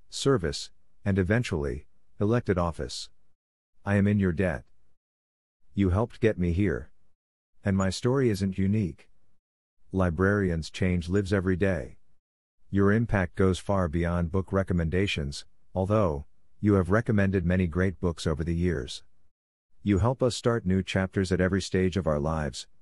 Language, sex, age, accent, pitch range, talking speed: Spanish, male, 50-69, American, 85-100 Hz, 140 wpm